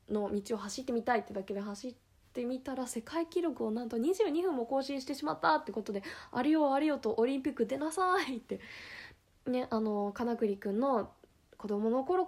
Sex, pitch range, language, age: female, 195-250 Hz, Japanese, 20-39